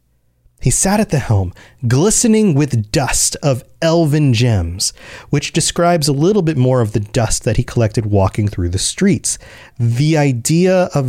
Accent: American